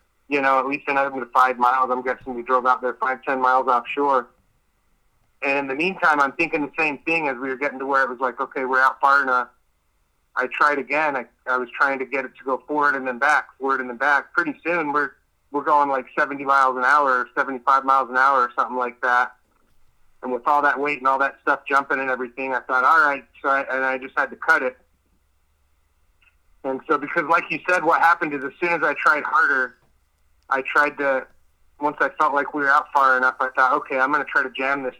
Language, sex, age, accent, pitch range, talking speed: English, male, 30-49, American, 125-140 Hz, 245 wpm